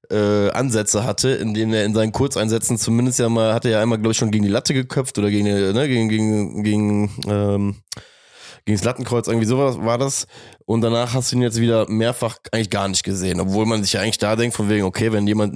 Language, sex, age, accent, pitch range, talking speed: German, male, 20-39, German, 105-130 Hz, 235 wpm